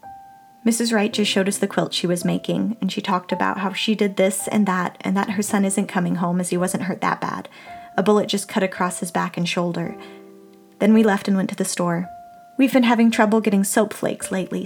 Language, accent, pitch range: English, American, 180-220 Hz